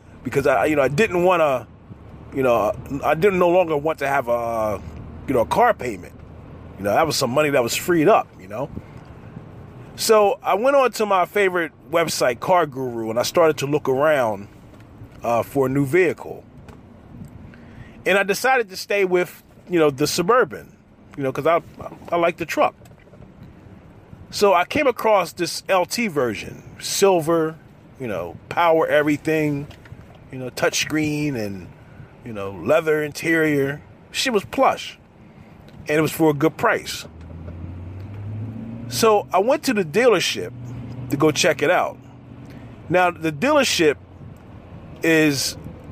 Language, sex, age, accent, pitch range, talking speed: English, male, 30-49, American, 115-180 Hz, 155 wpm